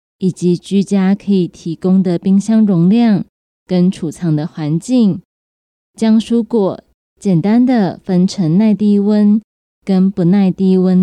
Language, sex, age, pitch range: Chinese, female, 20-39, 175-215 Hz